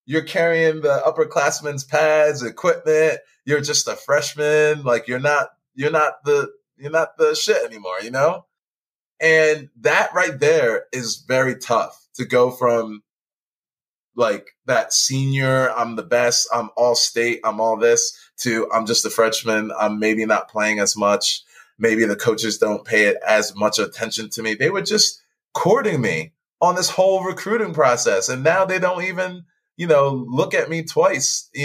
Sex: male